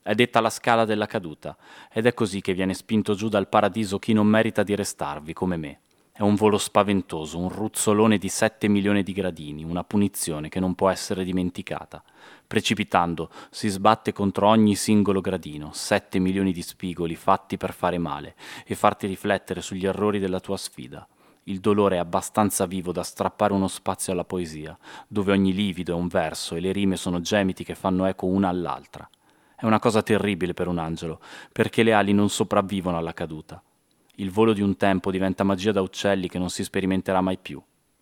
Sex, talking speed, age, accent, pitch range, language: male, 190 wpm, 30-49, native, 90-105 Hz, Italian